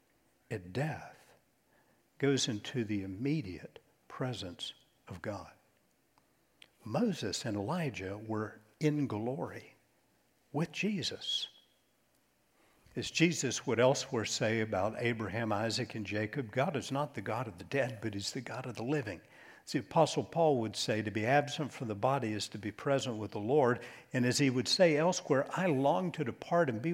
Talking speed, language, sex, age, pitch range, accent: 160 wpm, English, male, 60-79, 110-140 Hz, American